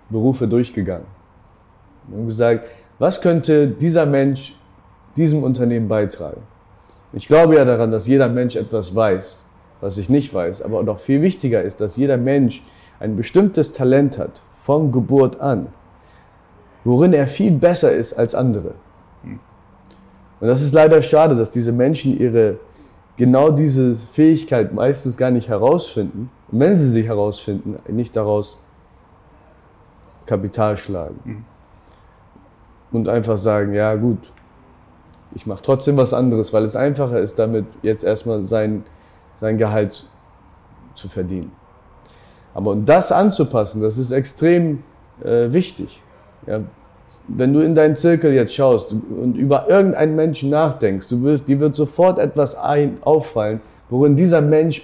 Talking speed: 135 wpm